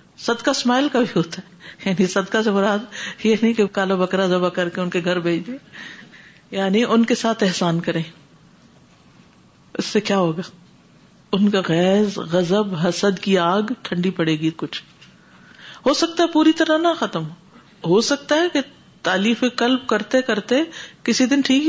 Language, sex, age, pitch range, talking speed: Urdu, female, 50-69, 185-235 Hz, 170 wpm